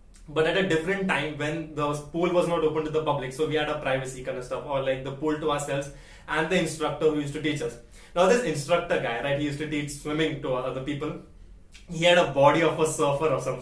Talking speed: 255 wpm